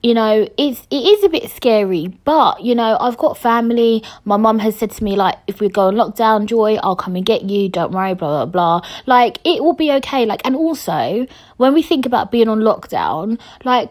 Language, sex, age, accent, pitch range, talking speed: English, female, 20-39, British, 200-265 Hz, 235 wpm